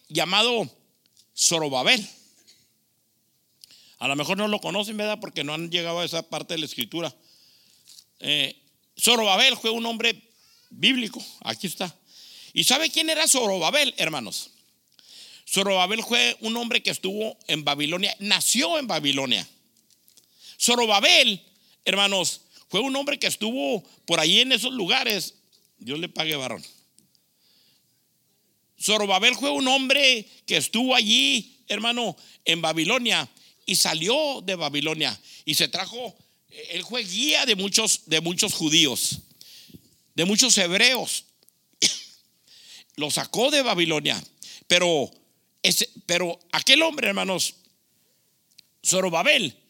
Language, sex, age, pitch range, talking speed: English, male, 50-69, 175-245 Hz, 120 wpm